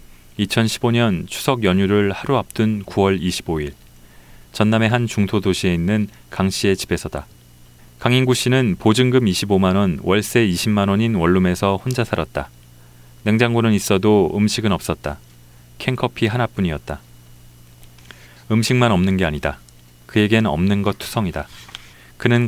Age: 40-59